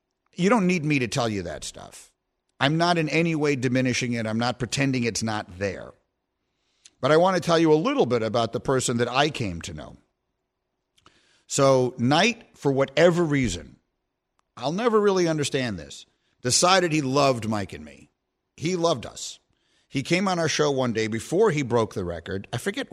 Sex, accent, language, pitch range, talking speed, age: male, American, English, 110-145 Hz, 190 wpm, 50-69